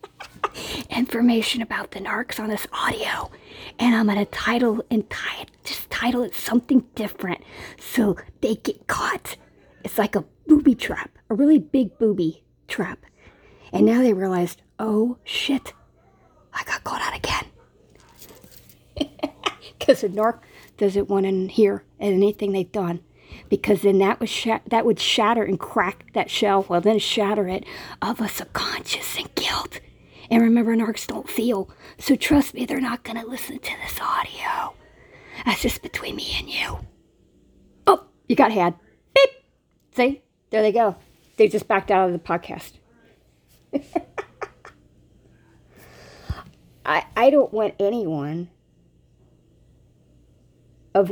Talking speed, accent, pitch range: 140 wpm, American, 190-235 Hz